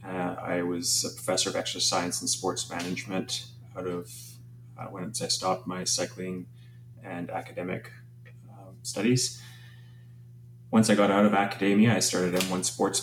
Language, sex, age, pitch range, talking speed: English, male, 30-49, 90-120 Hz, 145 wpm